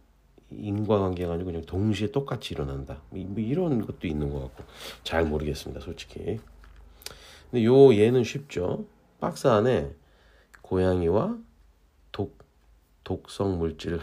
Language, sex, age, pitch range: Korean, male, 40-59, 75-105 Hz